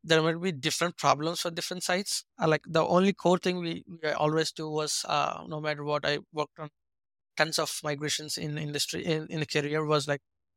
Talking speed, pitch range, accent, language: 205 wpm, 145-165 Hz, Indian, English